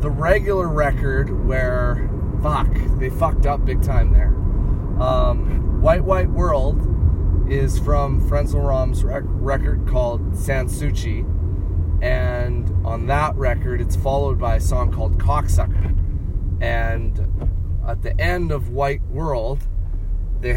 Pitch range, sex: 80-100 Hz, male